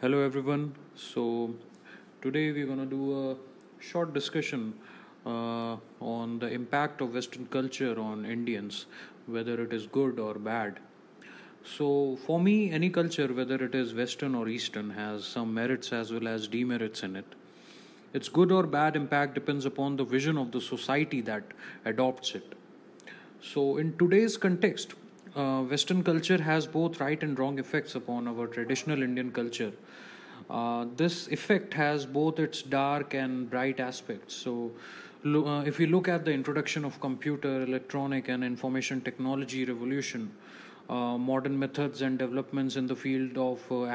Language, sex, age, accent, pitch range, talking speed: English, male, 30-49, Indian, 125-145 Hz, 155 wpm